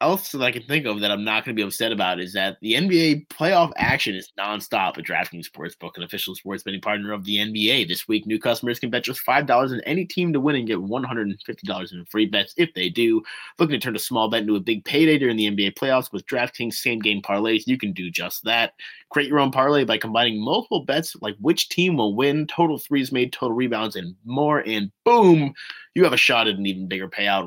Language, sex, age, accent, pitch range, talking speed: English, male, 30-49, American, 100-130 Hz, 240 wpm